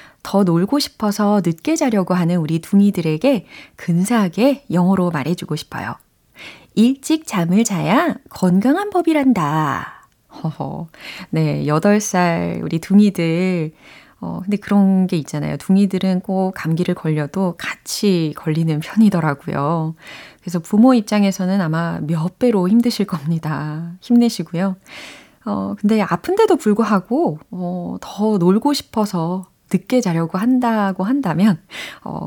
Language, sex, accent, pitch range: Korean, female, native, 165-235 Hz